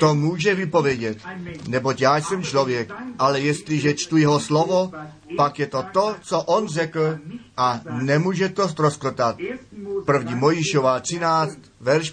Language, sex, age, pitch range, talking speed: Czech, male, 40-59, 140-180 Hz, 135 wpm